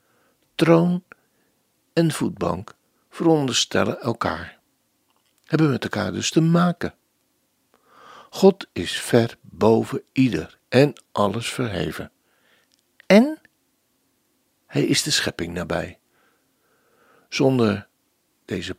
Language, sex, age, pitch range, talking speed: Dutch, male, 60-79, 110-165 Hz, 85 wpm